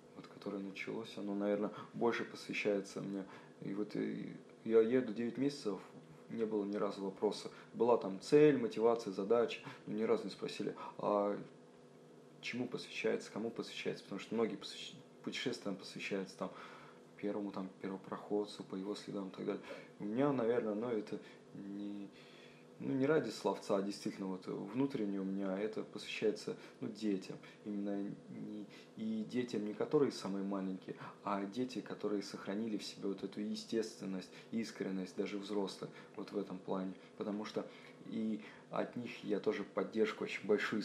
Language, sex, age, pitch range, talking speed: Russian, male, 20-39, 100-110 Hz, 150 wpm